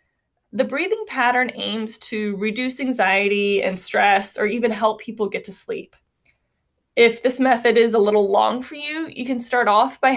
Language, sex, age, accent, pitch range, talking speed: English, female, 20-39, American, 210-250 Hz, 175 wpm